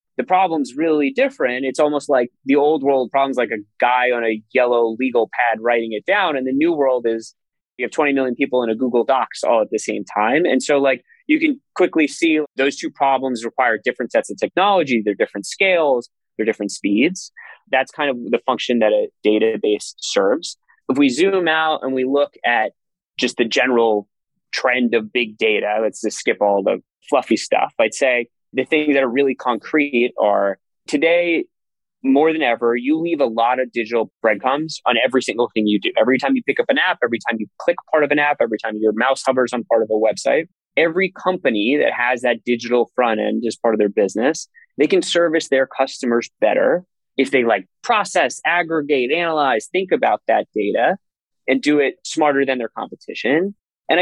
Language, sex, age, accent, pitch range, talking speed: English, male, 20-39, American, 120-170 Hz, 200 wpm